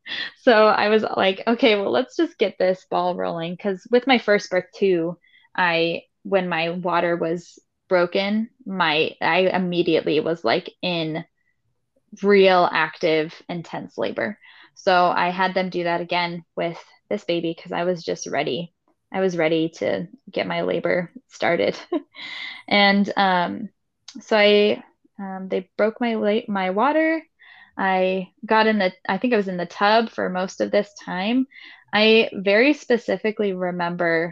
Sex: female